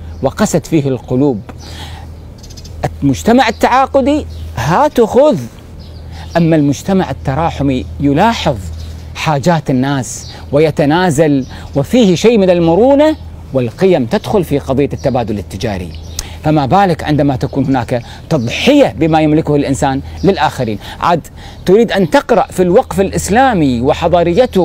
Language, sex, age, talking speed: Arabic, male, 40-59, 100 wpm